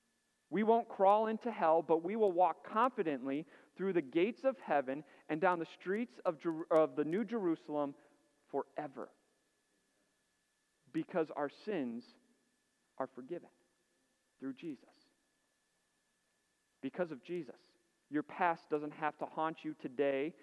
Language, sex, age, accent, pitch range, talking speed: English, male, 40-59, American, 140-200 Hz, 125 wpm